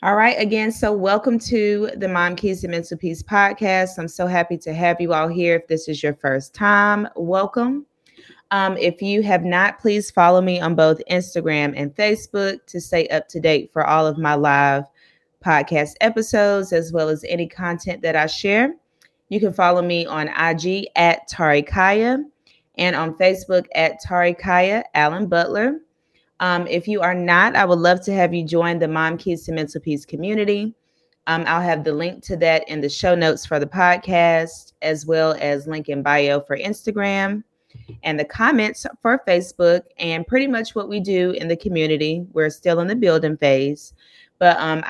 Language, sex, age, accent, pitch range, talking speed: English, female, 20-39, American, 160-195 Hz, 190 wpm